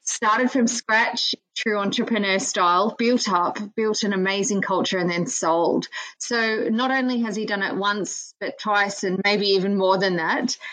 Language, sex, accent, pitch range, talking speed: English, female, Australian, 190-245 Hz, 175 wpm